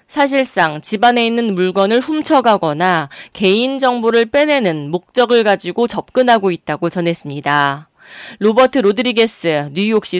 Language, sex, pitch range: Korean, female, 175-245 Hz